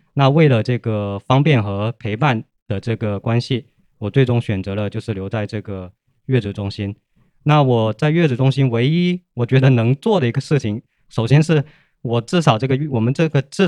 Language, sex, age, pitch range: Chinese, male, 20-39, 105-140 Hz